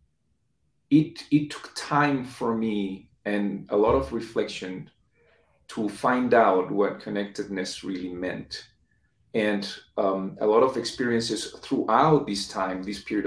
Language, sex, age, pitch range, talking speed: English, male, 40-59, 95-120 Hz, 130 wpm